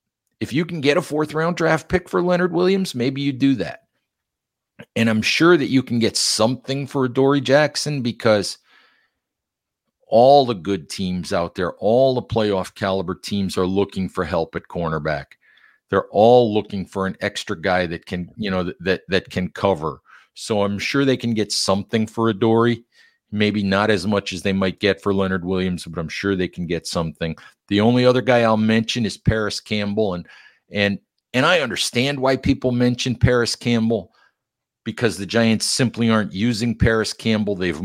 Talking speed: 185 wpm